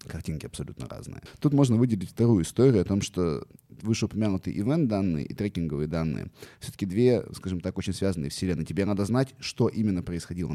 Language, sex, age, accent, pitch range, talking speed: Russian, male, 20-39, native, 90-120 Hz, 170 wpm